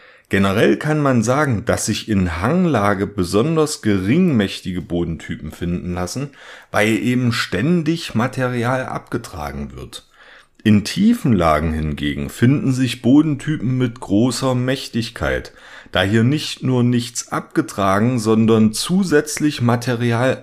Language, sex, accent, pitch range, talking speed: German, male, German, 100-135 Hz, 110 wpm